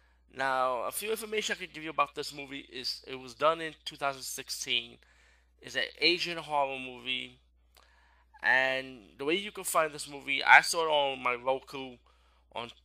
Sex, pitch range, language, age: male, 105-145 Hz, English, 20-39